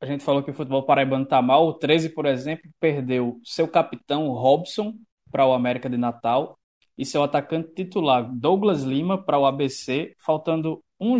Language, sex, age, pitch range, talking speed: Portuguese, male, 20-39, 130-165 Hz, 175 wpm